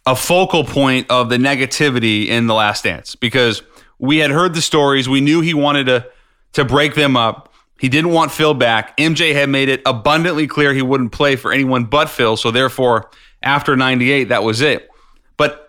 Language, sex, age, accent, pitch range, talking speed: English, male, 30-49, American, 125-150 Hz, 195 wpm